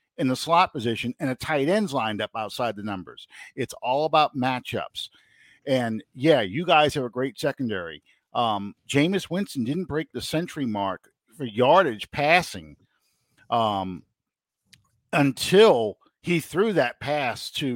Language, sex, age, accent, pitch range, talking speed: English, male, 50-69, American, 120-145 Hz, 145 wpm